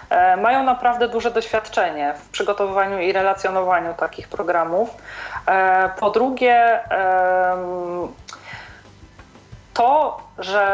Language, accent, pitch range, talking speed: Polish, native, 195-230 Hz, 80 wpm